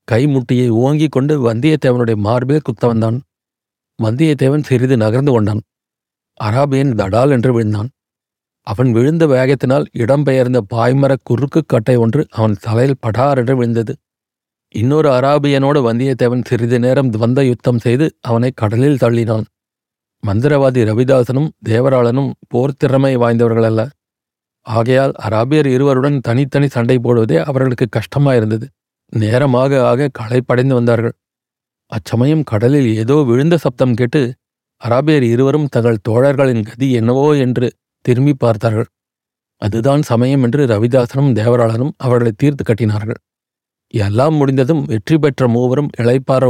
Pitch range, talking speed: 115-140 Hz, 110 wpm